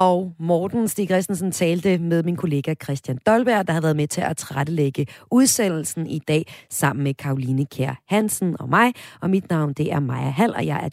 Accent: native